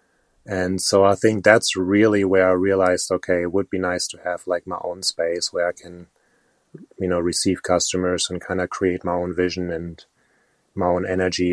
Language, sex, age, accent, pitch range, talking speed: English, male, 30-49, German, 90-95 Hz, 200 wpm